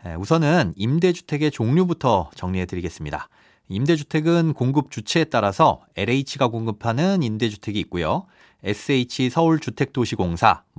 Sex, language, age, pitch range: male, Korean, 30-49, 105-155 Hz